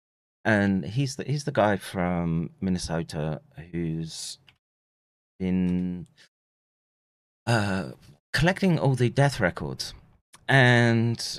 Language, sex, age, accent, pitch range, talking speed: English, male, 30-49, British, 90-120 Hz, 90 wpm